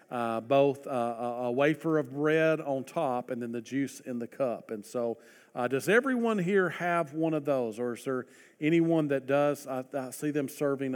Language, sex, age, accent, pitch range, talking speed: English, male, 40-59, American, 115-150 Hz, 205 wpm